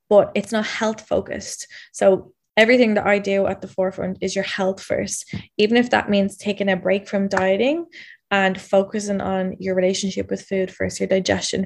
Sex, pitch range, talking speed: female, 190-210 Hz, 185 wpm